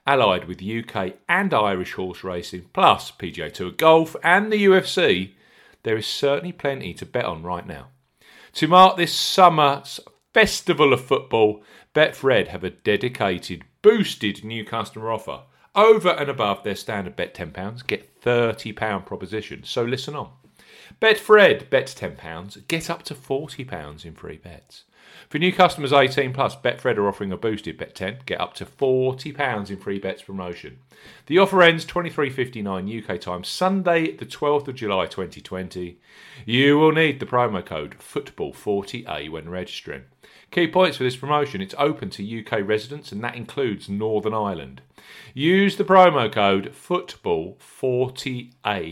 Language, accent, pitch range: English, British, 100-160 Hz